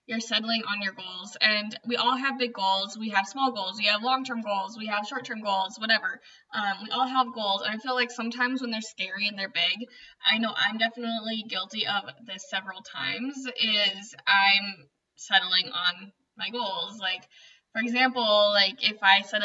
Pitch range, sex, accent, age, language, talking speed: 195-240 Hz, female, American, 10-29, English, 190 wpm